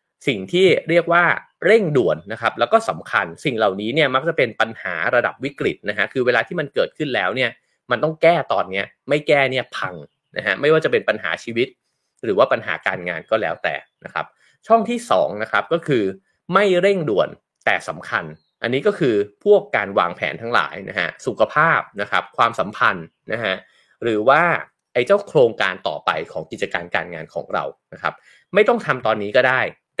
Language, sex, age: English, male, 20-39